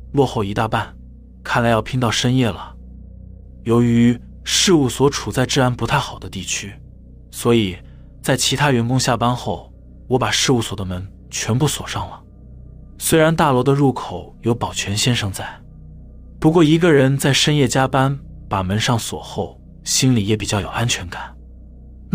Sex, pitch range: male, 85-130 Hz